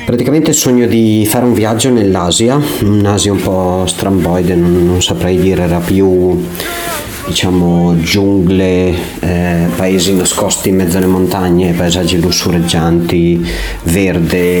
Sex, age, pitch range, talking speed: male, 30-49, 85-100 Hz, 125 wpm